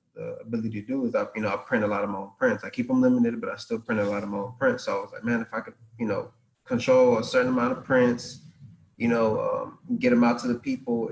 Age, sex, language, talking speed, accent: 20-39, male, English, 295 wpm, American